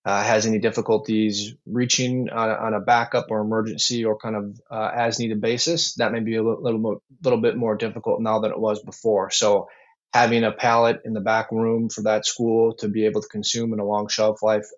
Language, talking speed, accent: English, 225 wpm, American